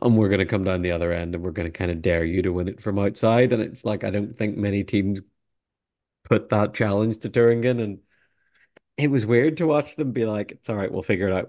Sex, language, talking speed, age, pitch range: male, English, 265 wpm, 40-59, 95-110 Hz